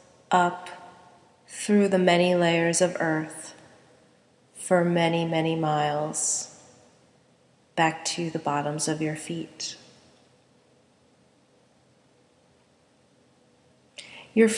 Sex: female